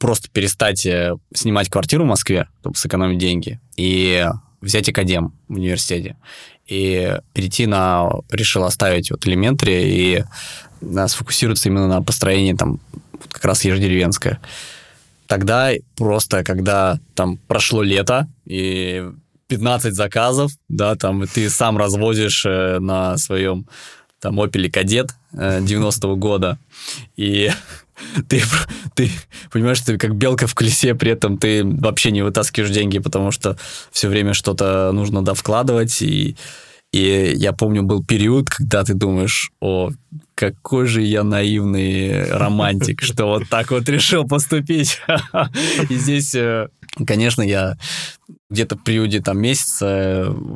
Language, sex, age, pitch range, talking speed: Russian, male, 20-39, 95-125 Hz, 130 wpm